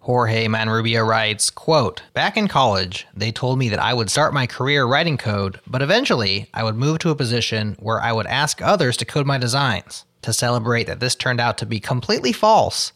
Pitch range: 110-145 Hz